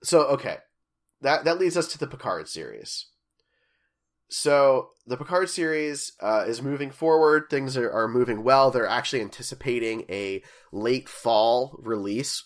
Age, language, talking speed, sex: 20-39, English, 145 wpm, male